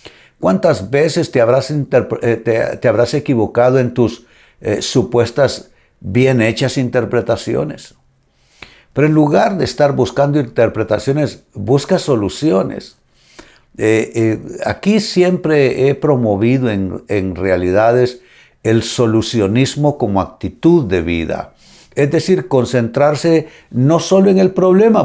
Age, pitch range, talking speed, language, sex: 60-79, 115-155 Hz, 110 wpm, Spanish, male